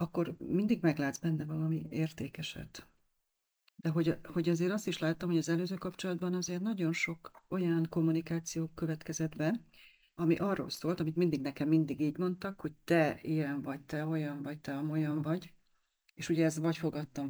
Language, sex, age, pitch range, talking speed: Hungarian, female, 40-59, 145-170 Hz, 170 wpm